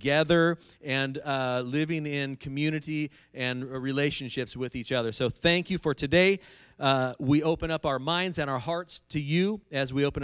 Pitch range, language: 135-180 Hz, English